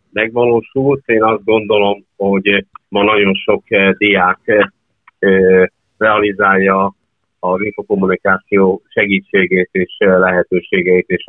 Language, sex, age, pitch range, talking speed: Hungarian, male, 50-69, 95-105 Hz, 85 wpm